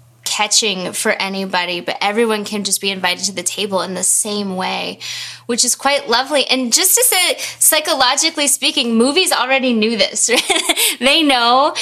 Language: English